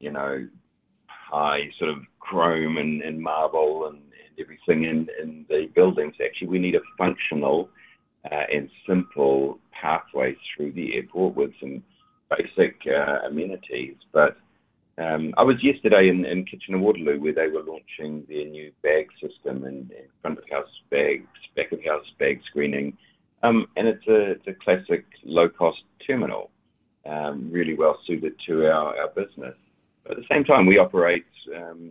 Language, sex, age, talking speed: English, male, 40-59, 160 wpm